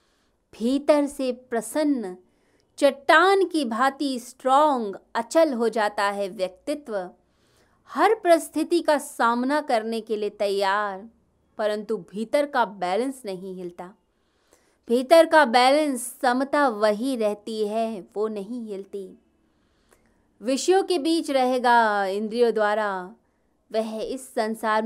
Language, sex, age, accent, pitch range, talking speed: Hindi, female, 20-39, native, 210-275 Hz, 110 wpm